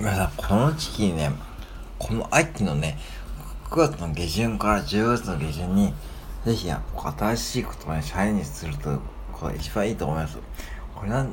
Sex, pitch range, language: male, 75-120 Hz, Japanese